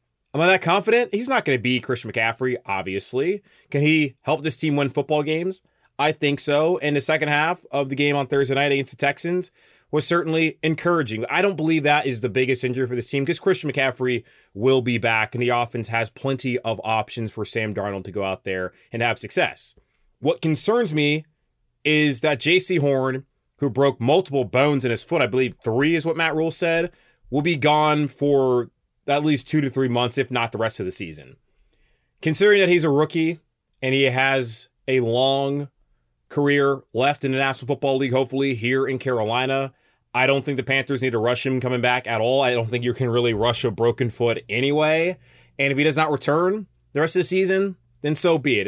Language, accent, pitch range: English, American, 125-160 Hz